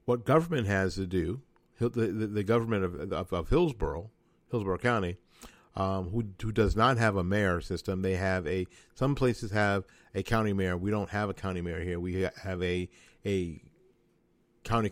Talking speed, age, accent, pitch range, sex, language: 180 wpm, 50-69, American, 95-115 Hz, male, English